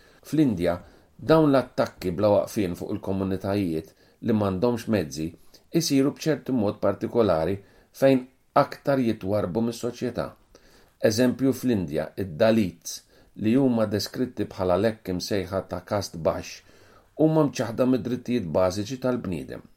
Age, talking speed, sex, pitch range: 40-59, 100 wpm, male, 95-125 Hz